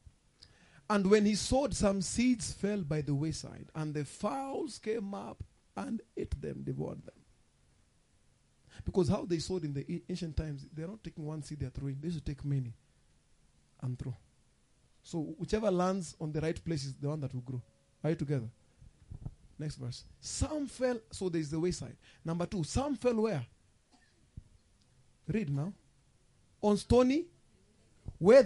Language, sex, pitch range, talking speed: English, male, 135-190 Hz, 155 wpm